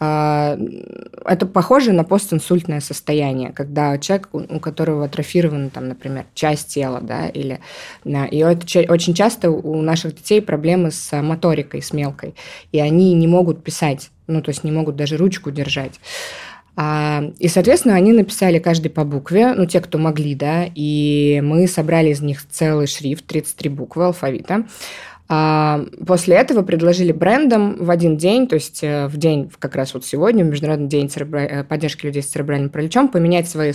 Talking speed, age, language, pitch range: 160 wpm, 20-39, Russian, 145-180 Hz